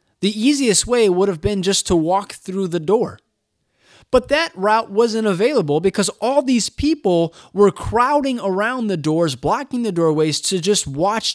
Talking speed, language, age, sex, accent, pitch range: 170 wpm, English, 20-39, male, American, 175-240 Hz